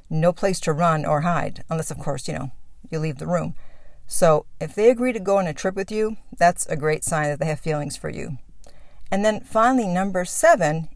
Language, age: English, 50-69